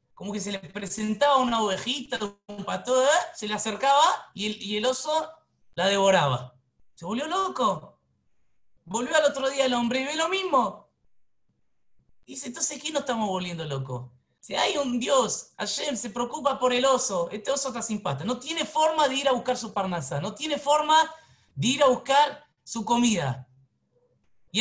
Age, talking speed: 30-49, 180 wpm